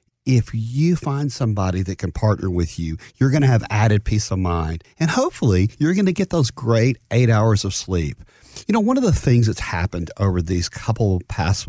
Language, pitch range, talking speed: English, 105-165 Hz, 215 wpm